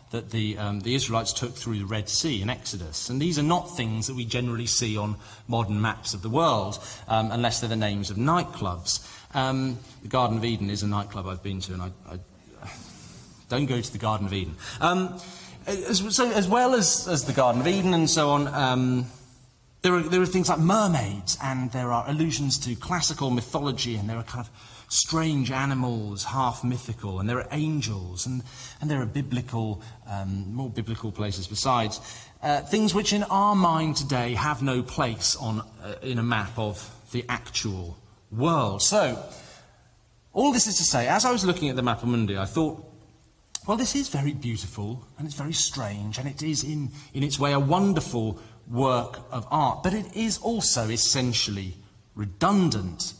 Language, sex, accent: English, male, British